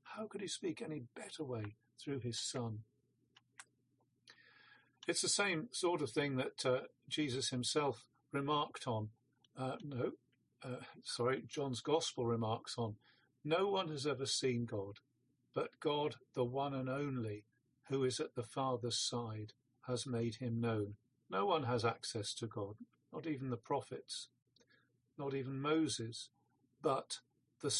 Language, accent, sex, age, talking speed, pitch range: English, British, male, 50-69, 145 wpm, 120-145 Hz